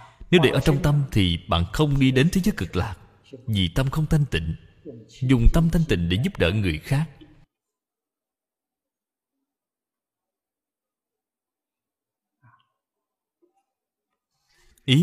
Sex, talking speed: male, 115 wpm